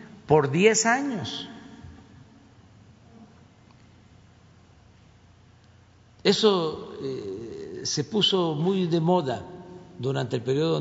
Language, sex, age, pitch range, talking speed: Spanish, male, 60-79, 115-165 Hz, 70 wpm